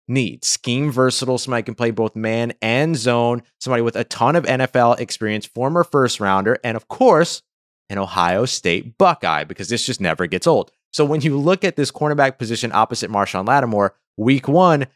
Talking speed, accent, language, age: 190 wpm, American, English, 30-49